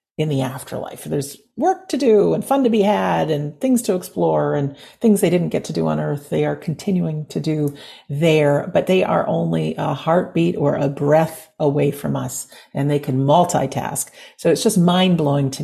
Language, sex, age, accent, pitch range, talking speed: English, female, 50-69, American, 140-185 Hz, 205 wpm